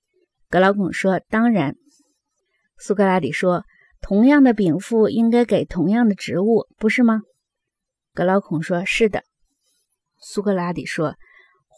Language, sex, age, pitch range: Chinese, female, 20-39, 185-240 Hz